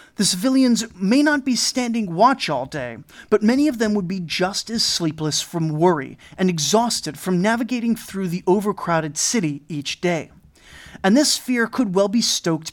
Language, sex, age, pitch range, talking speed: English, male, 30-49, 170-225 Hz, 175 wpm